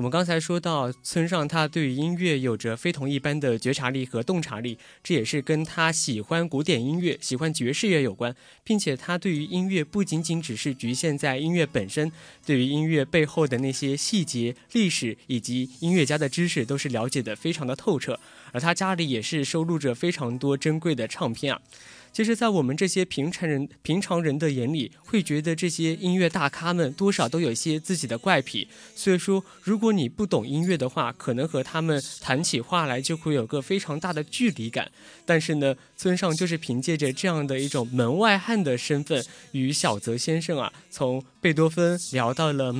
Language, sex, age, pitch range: Chinese, male, 20-39, 130-175 Hz